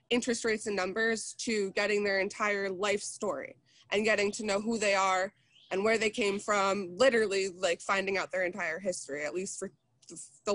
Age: 20-39